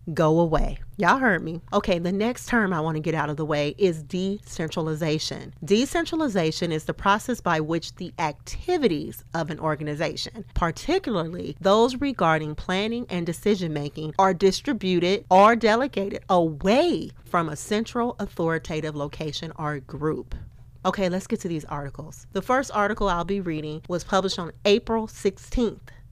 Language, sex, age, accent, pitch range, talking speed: English, female, 40-59, American, 160-210 Hz, 150 wpm